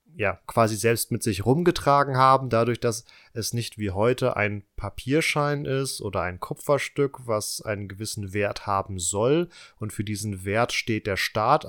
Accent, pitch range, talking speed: German, 100-115 Hz, 165 wpm